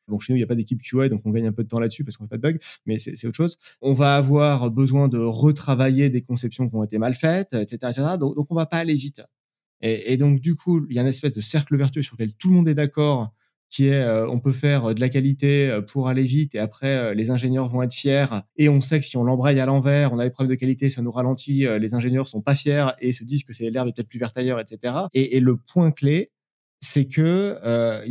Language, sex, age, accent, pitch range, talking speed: French, male, 20-39, French, 120-145 Hz, 285 wpm